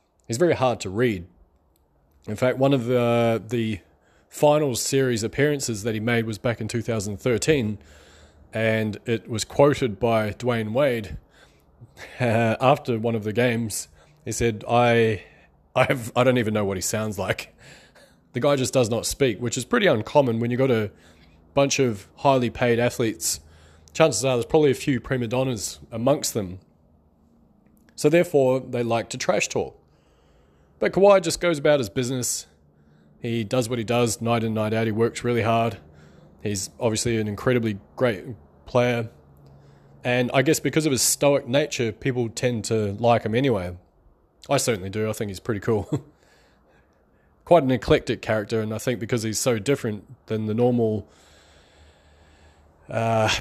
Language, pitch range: English, 95-125 Hz